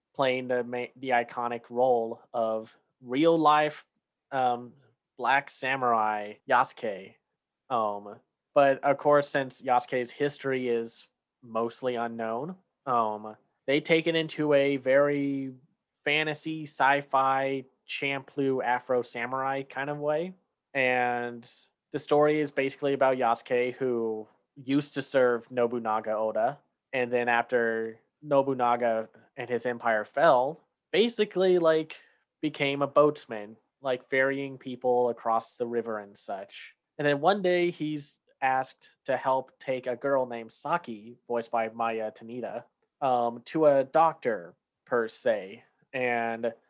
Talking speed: 120 wpm